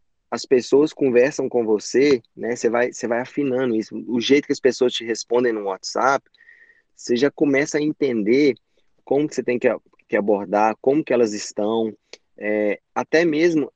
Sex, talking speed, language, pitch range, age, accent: male, 170 wpm, Portuguese, 115-150 Hz, 20-39, Brazilian